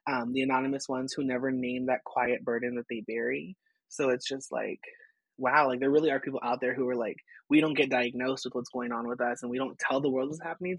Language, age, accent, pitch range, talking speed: English, 20-39, American, 125-155 Hz, 255 wpm